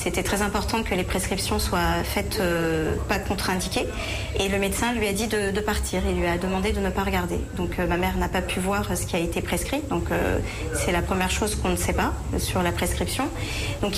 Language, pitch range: English, 185-215 Hz